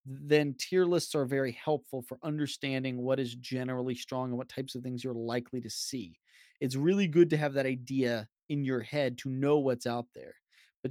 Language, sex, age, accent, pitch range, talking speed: English, male, 20-39, American, 125-160 Hz, 205 wpm